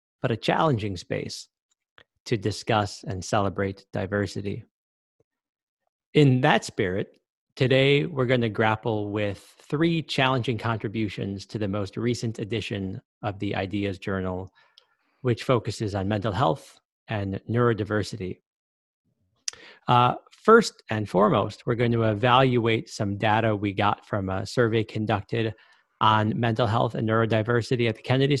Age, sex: 40-59, male